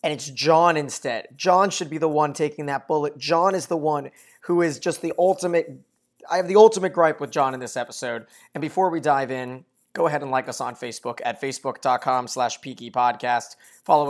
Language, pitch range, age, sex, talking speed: English, 125-160 Hz, 20-39, male, 210 wpm